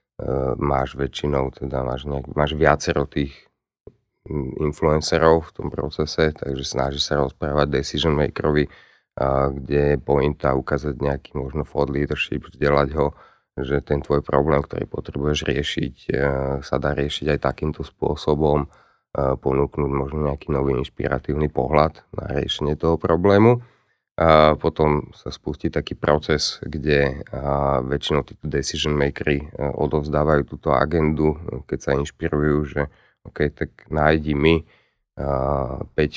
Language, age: Slovak, 30-49